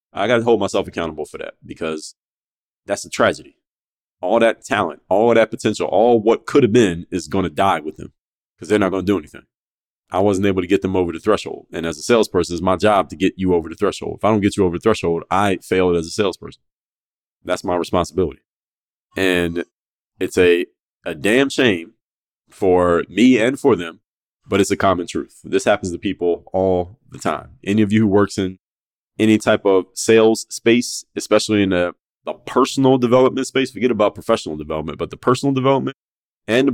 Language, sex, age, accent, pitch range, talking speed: English, male, 30-49, American, 90-115 Hz, 205 wpm